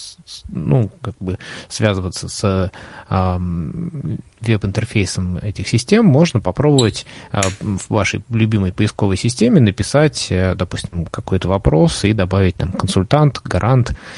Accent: native